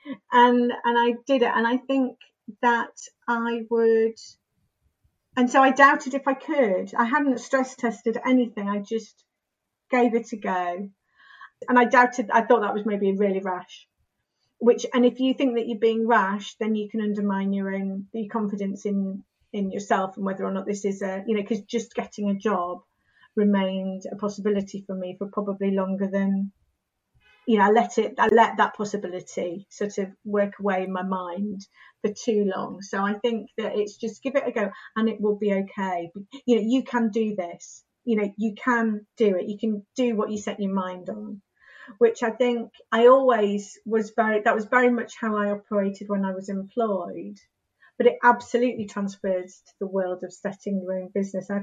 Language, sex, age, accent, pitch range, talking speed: English, female, 40-59, British, 195-235 Hz, 195 wpm